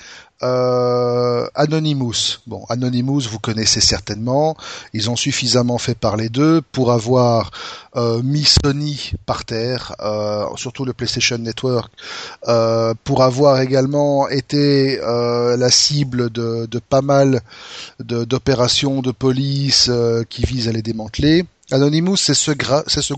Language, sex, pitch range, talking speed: French, male, 120-145 Hz, 135 wpm